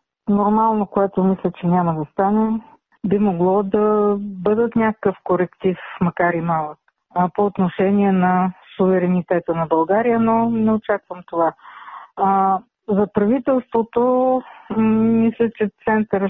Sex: female